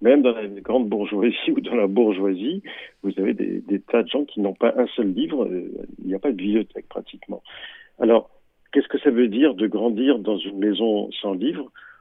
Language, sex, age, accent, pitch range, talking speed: Italian, male, 50-69, French, 100-130 Hz, 210 wpm